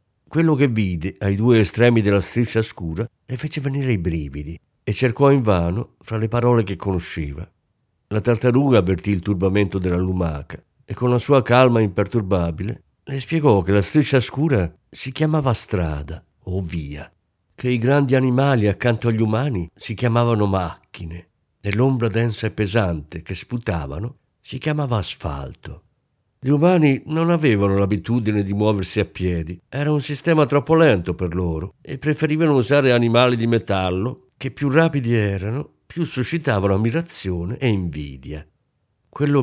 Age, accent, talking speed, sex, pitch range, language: 50-69, native, 150 wpm, male, 95-135 Hz, Italian